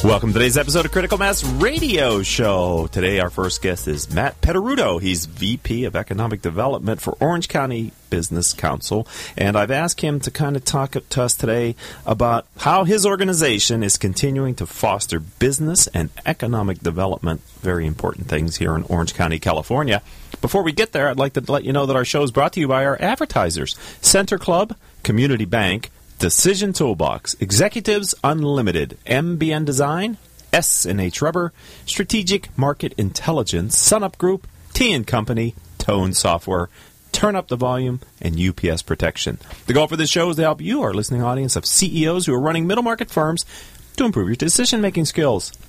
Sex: male